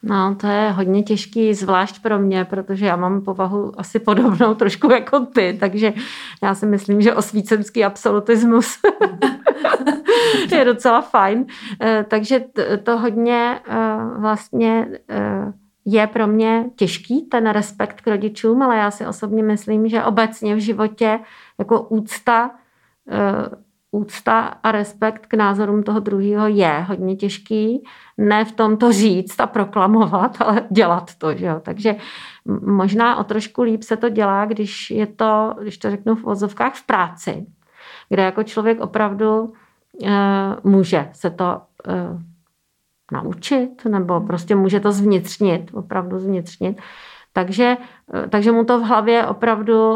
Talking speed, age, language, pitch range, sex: 140 wpm, 40-59, Czech, 195-225 Hz, female